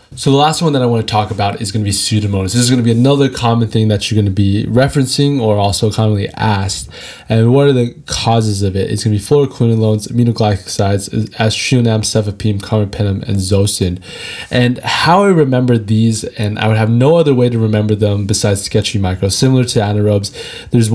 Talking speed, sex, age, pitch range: 210 wpm, male, 20-39, 100-120 Hz